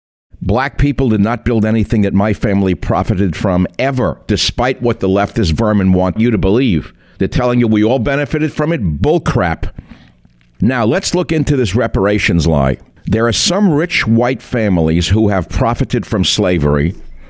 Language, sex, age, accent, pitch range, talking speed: English, male, 60-79, American, 85-120 Hz, 165 wpm